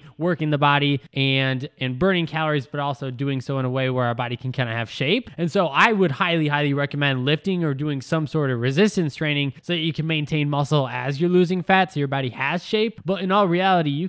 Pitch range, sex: 140-175 Hz, male